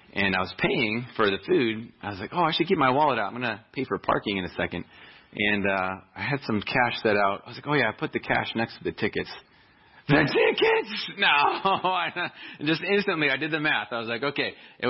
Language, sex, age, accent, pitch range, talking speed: English, male, 30-49, American, 105-140 Hz, 250 wpm